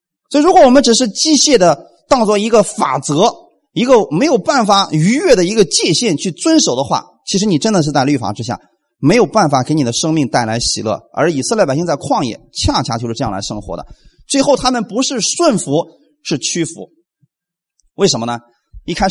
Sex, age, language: male, 30-49, Chinese